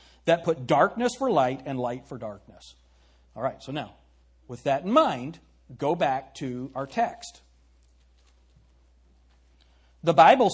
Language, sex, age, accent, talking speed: English, male, 40-59, American, 135 wpm